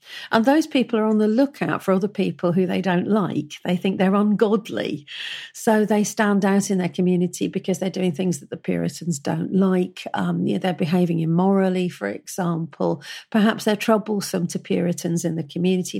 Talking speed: 190 wpm